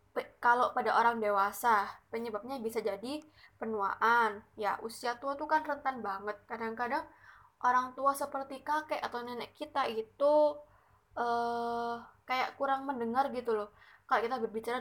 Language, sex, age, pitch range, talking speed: Indonesian, female, 10-29, 215-260 Hz, 135 wpm